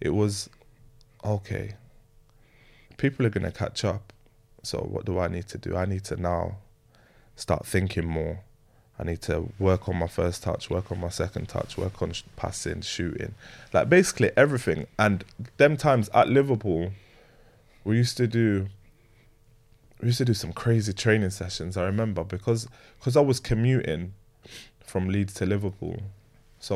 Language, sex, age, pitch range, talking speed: English, male, 20-39, 95-115 Hz, 160 wpm